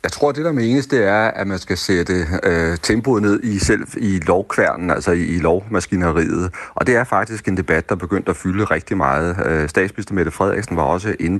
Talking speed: 220 wpm